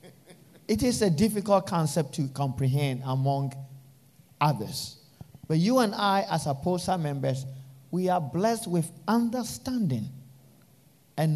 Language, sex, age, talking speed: English, male, 50-69, 115 wpm